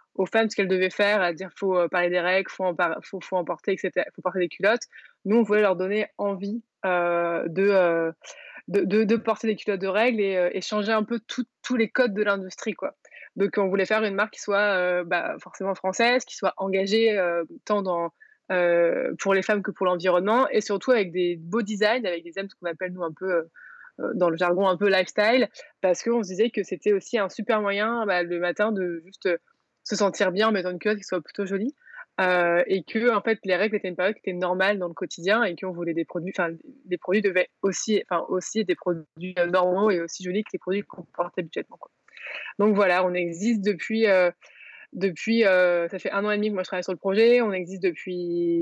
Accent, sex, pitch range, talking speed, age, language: French, female, 180-210 Hz, 235 wpm, 20-39, French